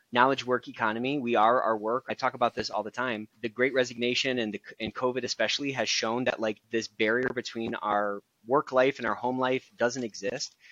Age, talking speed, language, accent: 30-49, 215 wpm, English, American